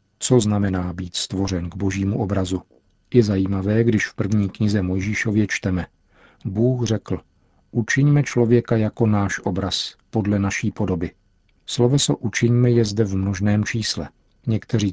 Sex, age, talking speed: male, 50-69, 135 wpm